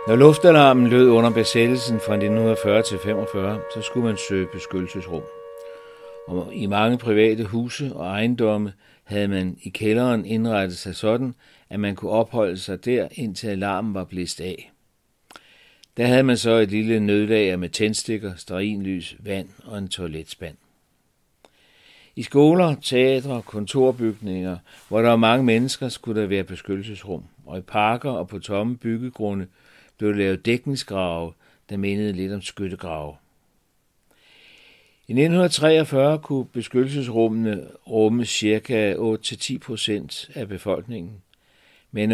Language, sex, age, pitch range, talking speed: Danish, male, 60-79, 95-120 Hz, 130 wpm